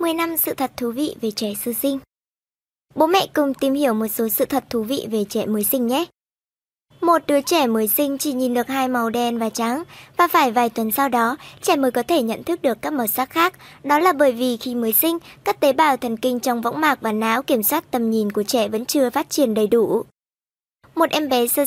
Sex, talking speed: male, 245 wpm